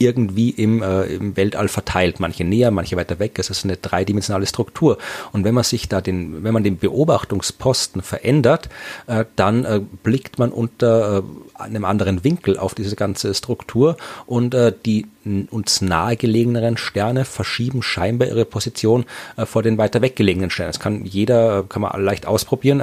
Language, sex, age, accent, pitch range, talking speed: German, male, 40-59, German, 100-125 Hz, 170 wpm